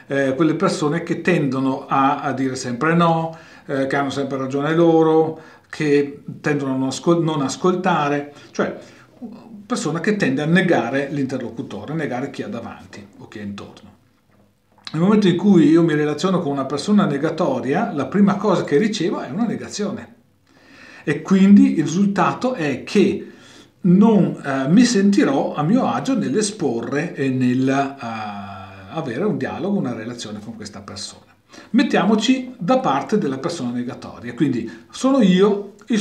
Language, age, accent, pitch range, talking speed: Italian, 40-59, native, 135-205 Hz, 155 wpm